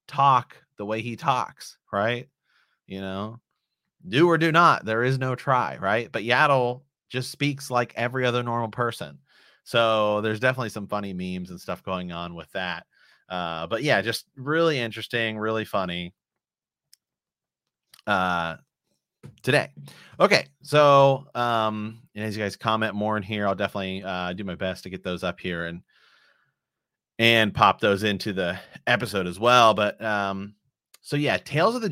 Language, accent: English, American